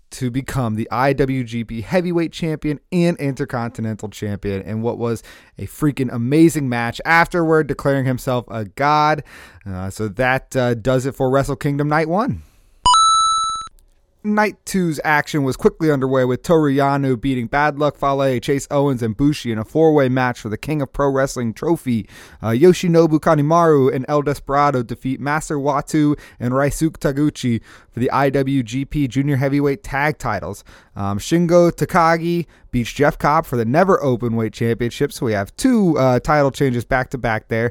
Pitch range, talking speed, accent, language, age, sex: 120-155 Hz, 160 wpm, American, English, 30-49, male